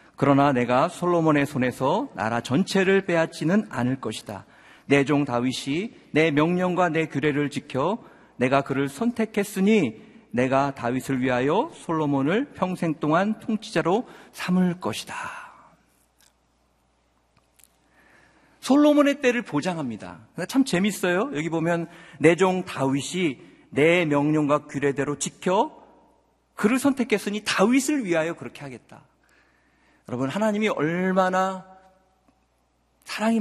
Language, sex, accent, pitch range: Korean, male, native, 145-230 Hz